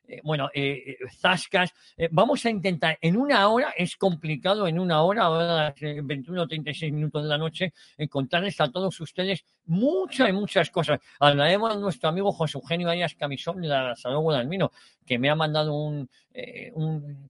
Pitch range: 145-185 Hz